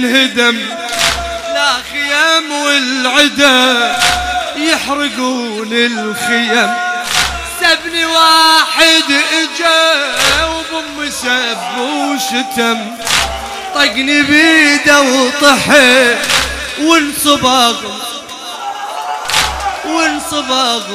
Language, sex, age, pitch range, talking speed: Arabic, male, 30-49, 230-315 Hz, 50 wpm